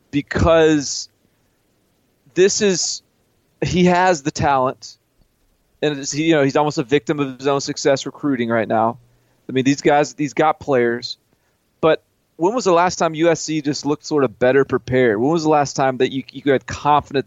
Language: English